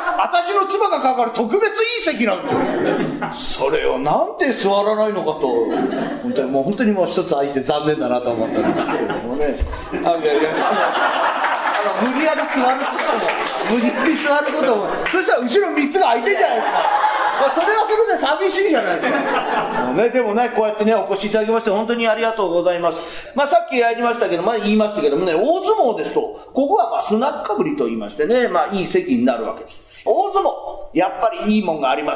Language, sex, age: Japanese, male, 40-59